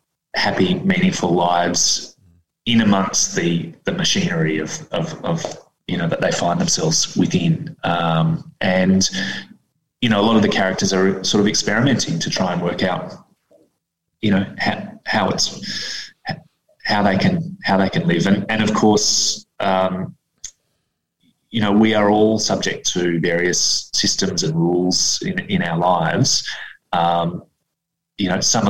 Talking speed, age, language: 150 wpm, 20-39, English